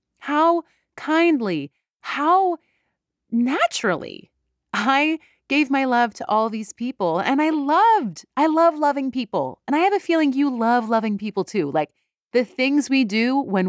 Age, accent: 30-49, American